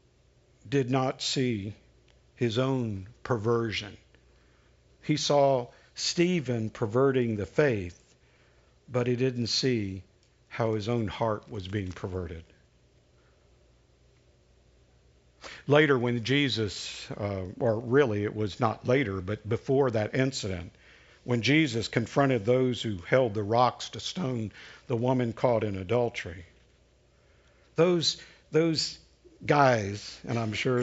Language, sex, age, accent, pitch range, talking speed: English, male, 50-69, American, 105-145 Hz, 115 wpm